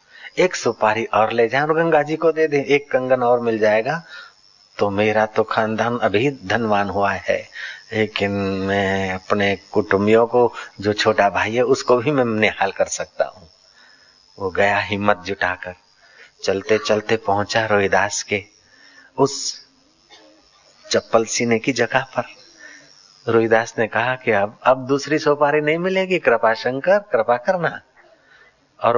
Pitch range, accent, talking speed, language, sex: 110-150 Hz, native, 125 wpm, Hindi, male